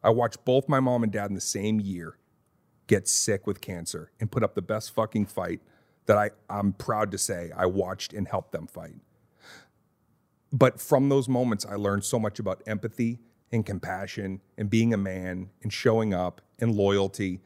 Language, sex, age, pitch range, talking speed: English, male, 40-59, 105-135 Hz, 185 wpm